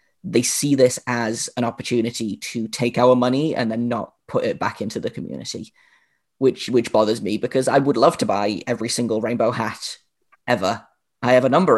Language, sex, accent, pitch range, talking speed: English, male, British, 110-125 Hz, 195 wpm